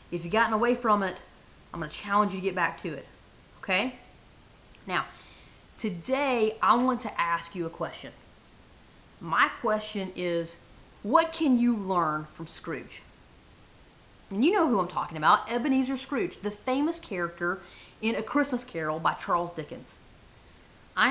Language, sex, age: English, female, 30-49